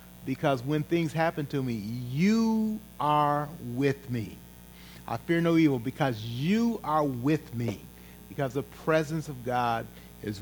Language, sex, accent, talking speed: English, male, American, 145 wpm